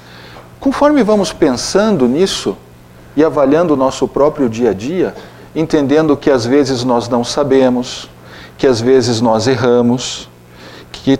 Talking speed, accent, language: 135 wpm, Brazilian, Portuguese